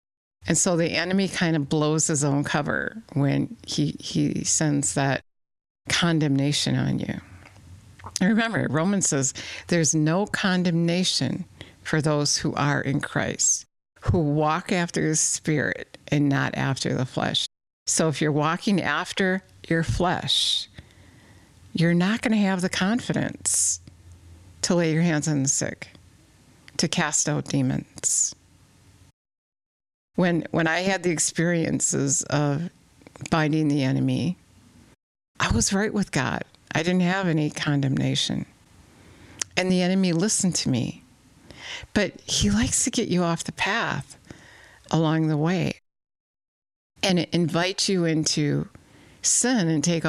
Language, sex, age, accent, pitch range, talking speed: English, female, 50-69, American, 140-180 Hz, 135 wpm